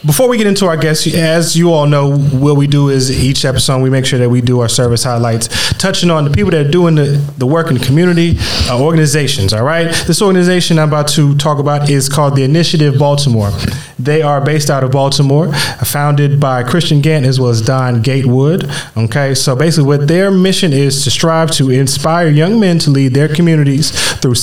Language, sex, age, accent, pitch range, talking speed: English, male, 20-39, American, 130-155 Hz, 210 wpm